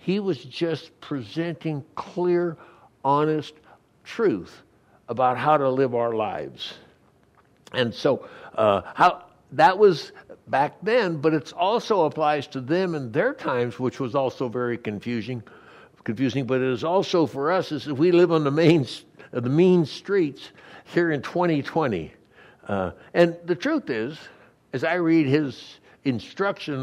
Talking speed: 145 wpm